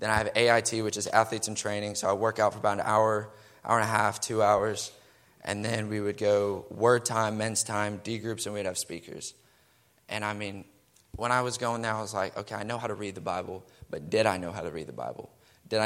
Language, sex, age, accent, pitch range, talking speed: English, male, 20-39, American, 105-115 Hz, 255 wpm